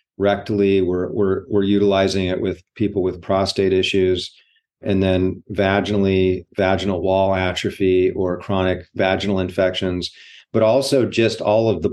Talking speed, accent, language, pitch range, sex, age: 135 wpm, American, English, 95-105 Hz, male, 40-59